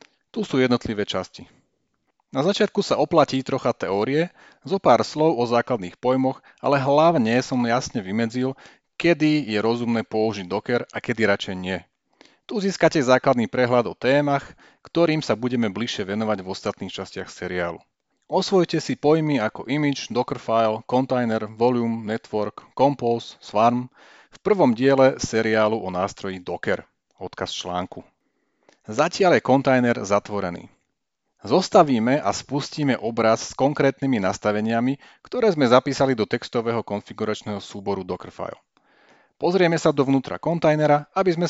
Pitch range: 105-140 Hz